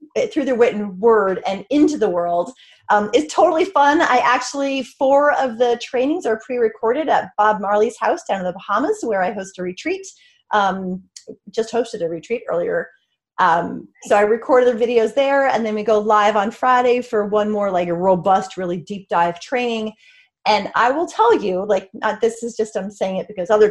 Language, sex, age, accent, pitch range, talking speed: English, female, 30-49, American, 205-270 Hz, 195 wpm